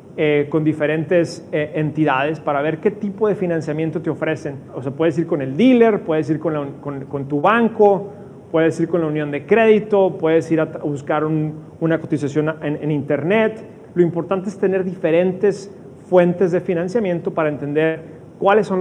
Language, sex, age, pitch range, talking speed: Spanish, male, 30-49, 155-190 Hz, 180 wpm